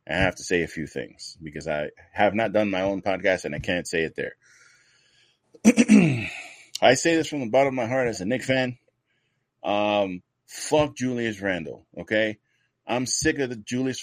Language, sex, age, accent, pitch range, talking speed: English, male, 30-49, American, 105-130 Hz, 190 wpm